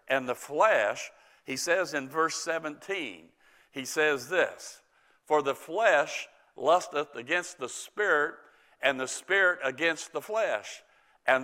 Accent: American